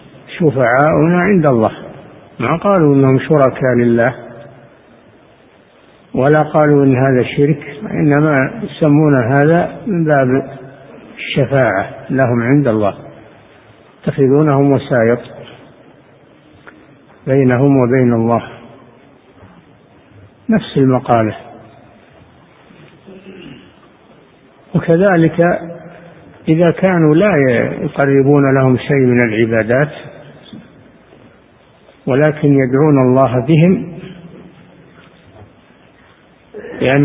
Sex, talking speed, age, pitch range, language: male, 70 wpm, 60-79, 130-155 Hz, Arabic